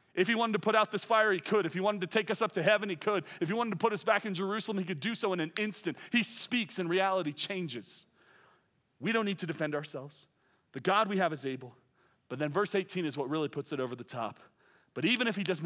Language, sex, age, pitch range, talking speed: English, male, 30-49, 175-215 Hz, 270 wpm